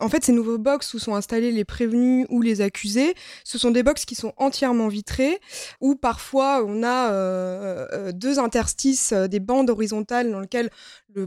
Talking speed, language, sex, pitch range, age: 180 wpm, French, female, 205-260 Hz, 20-39